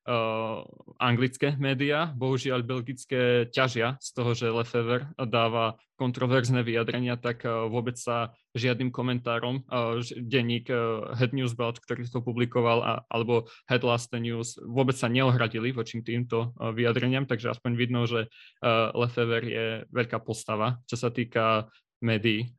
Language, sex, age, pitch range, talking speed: Slovak, male, 20-39, 115-130 Hz, 140 wpm